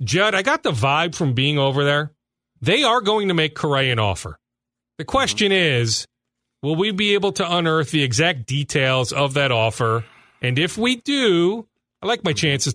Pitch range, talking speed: 120-170 Hz, 190 wpm